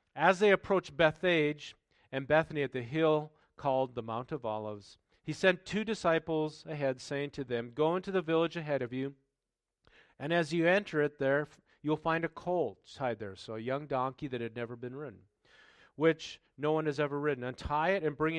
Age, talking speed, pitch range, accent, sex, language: 40-59, 195 wpm, 115-160 Hz, American, male, English